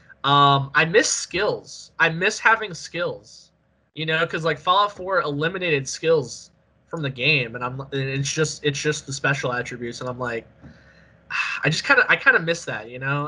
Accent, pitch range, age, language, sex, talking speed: American, 130-155 Hz, 20-39, English, male, 195 wpm